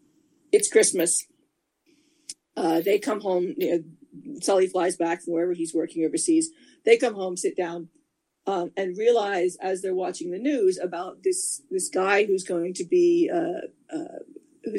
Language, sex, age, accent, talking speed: English, female, 40-59, American, 155 wpm